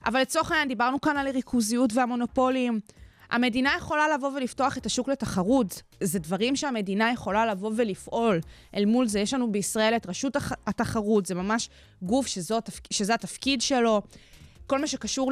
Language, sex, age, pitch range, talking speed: Hebrew, female, 20-39, 205-260 Hz, 160 wpm